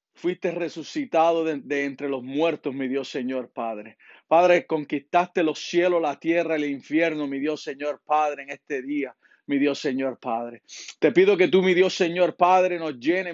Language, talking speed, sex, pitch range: Spanish, 185 wpm, male, 155-190 Hz